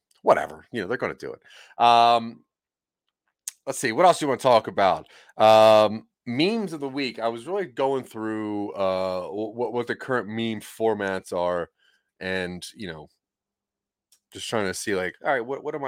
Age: 30-49